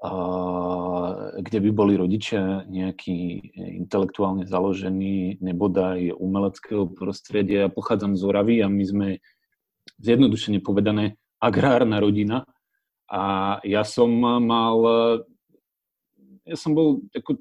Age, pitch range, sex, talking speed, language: 30-49, 100-125 Hz, male, 105 wpm, Slovak